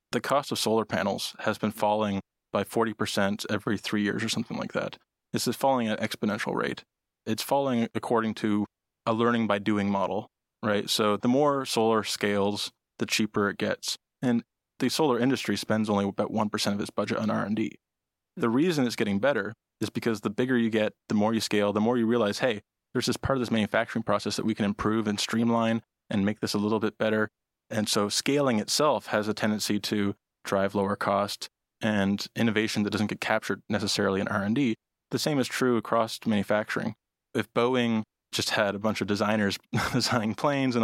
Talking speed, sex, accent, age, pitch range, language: 195 wpm, male, American, 20-39, 105-115 Hz, English